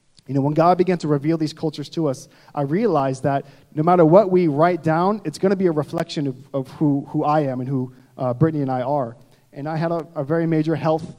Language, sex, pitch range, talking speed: English, male, 140-165 Hz, 250 wpm